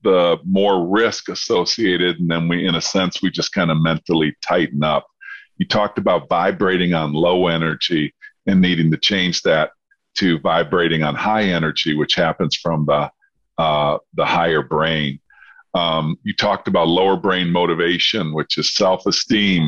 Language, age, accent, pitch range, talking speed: English, 50-69, American, 80-100 Hz, 160 wpm